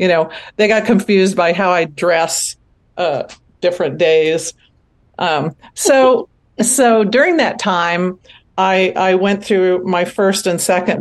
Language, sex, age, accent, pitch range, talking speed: English, female, 50-69, American, 165-195 Hz, 140 wpm